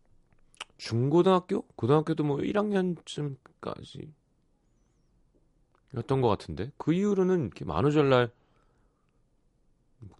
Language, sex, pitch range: Korean, male, 95-145 Hz